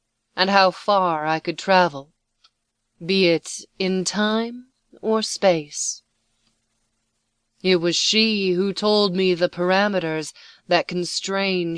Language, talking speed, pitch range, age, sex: English, 110 wpm, 160-210 Hz, 30-49, female